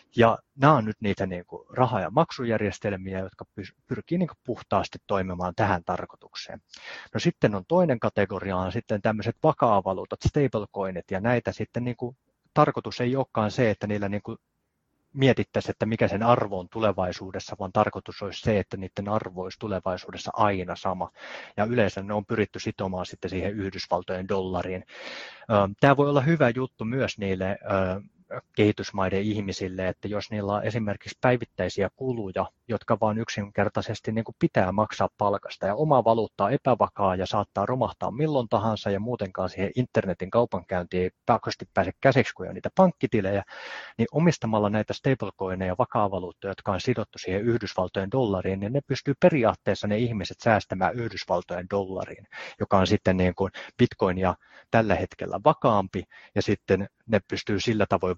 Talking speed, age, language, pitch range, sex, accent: 145 wpm, 30-49, Finnish, 95-115 Hz, male, native